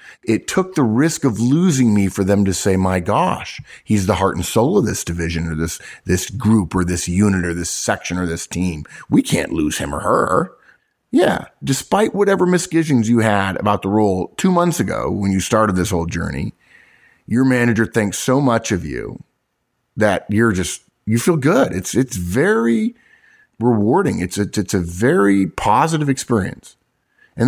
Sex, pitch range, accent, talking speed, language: male, 95-130 Hz, American, 180 wpm, English